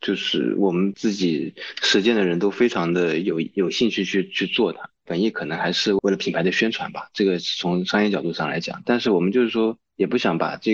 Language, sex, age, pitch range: Chinese, male, 20-39, 90-115 Hz